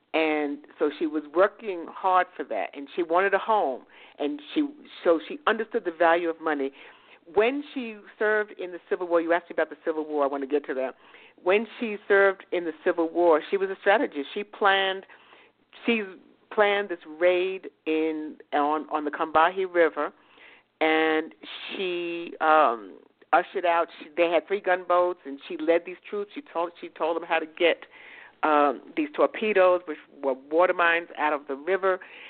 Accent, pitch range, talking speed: American, 155-200 Hz, 185 wpm